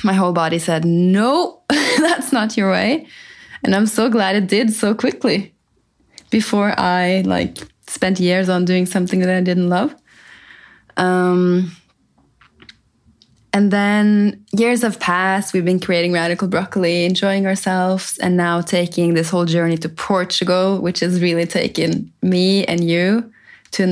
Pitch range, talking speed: 175-215 Hz, 150 wpm